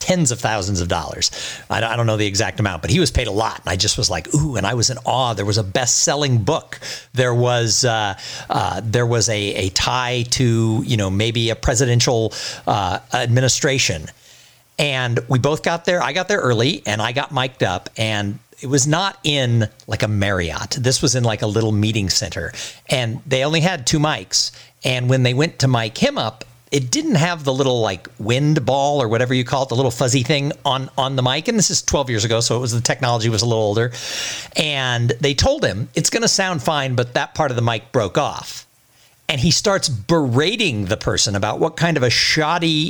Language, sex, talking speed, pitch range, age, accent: English, male, 220 wpm, 110-145 Hz, 50-69, American